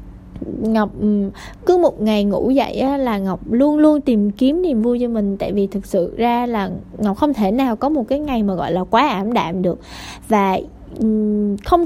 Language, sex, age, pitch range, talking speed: Vietnamese, female, 20-39, 195-275 Hz, 195 wpm